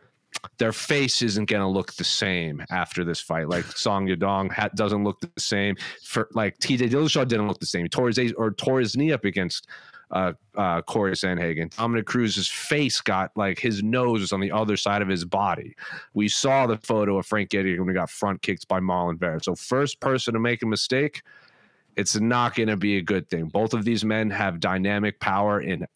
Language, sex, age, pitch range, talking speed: English, male, 30-49, 95-120 Hz, 215 wpm